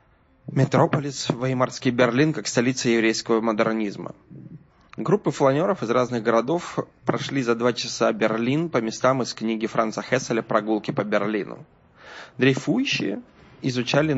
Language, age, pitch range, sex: Russian, 20-39, 110-135 Hz, male